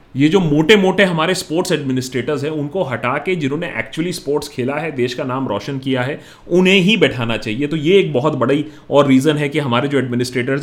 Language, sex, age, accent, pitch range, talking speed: Hindi, male, 30-49, native, 130-175 Hz, 215 wpm